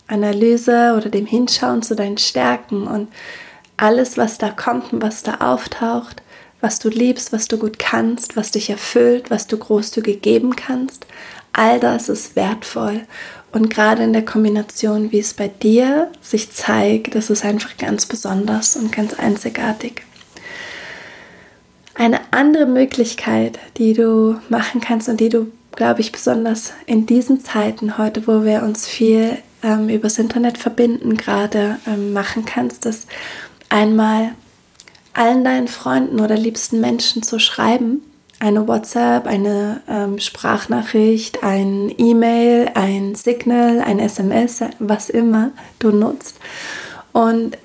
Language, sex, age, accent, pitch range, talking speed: German, female, 20-39, German, 215-235 Hz, 135 wpm